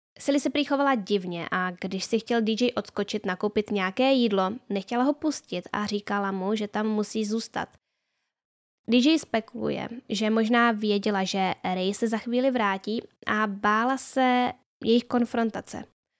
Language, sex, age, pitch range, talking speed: Czech, female, 10-29, 200-240 Hz, 145 wpm